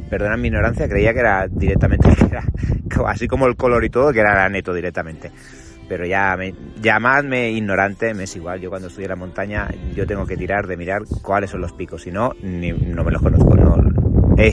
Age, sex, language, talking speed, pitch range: 30-49, male, Spanish, 215 wpm, 90-115 Hz